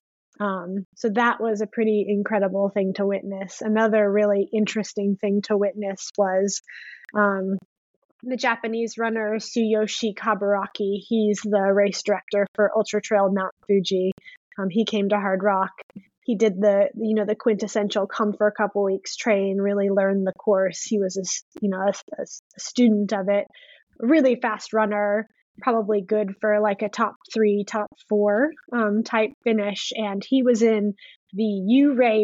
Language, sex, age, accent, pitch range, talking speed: English, female, 20-39, American, 205-230 Hz, 160 wpm